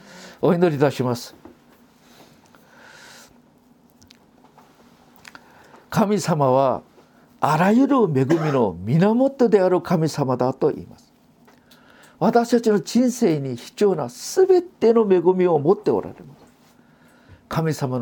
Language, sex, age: Japanese, male, 50-69